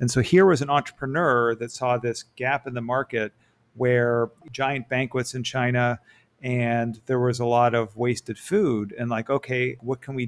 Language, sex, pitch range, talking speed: English, male, 115-130 Hz, 185 wpm